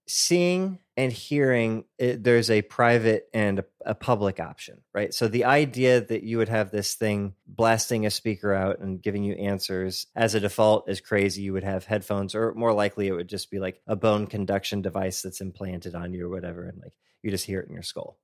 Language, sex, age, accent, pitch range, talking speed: English, male, 20-39, American, 100-115 Hz, 215 wpm